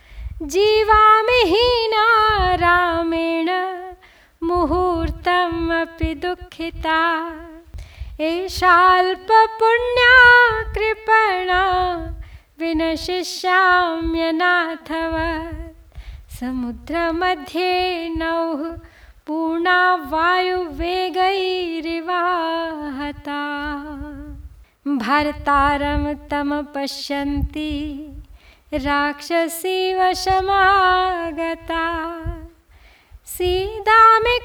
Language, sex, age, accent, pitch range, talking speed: Hindi, female, 20-39, native, 290-365 Hz, 30 wpm